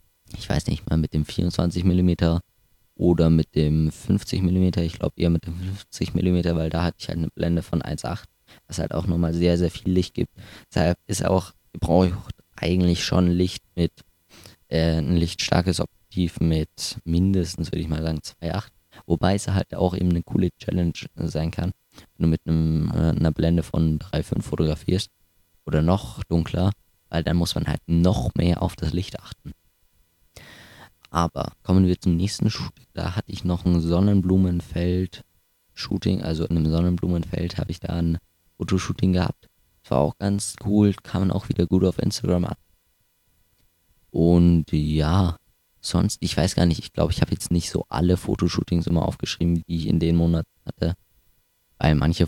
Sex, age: male, 20-39